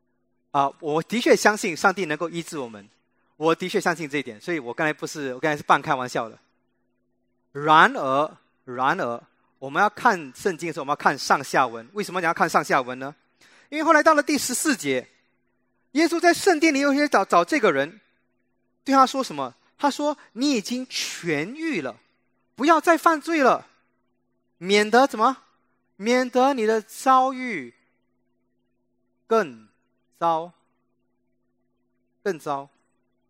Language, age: English, 30-49